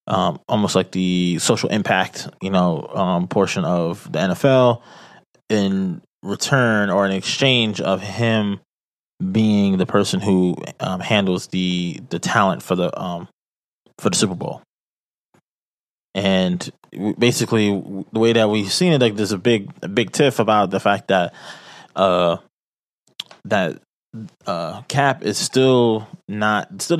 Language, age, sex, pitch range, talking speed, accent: English, 20-39, male, 95-115 Hz, 140 wpm, American